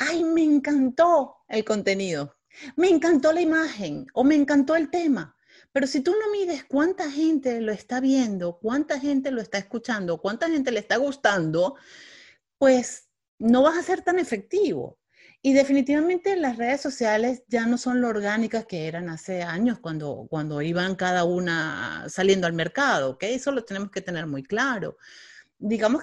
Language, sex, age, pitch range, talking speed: Spanish, female, 40-59, 195-290 Hz, 170 wpm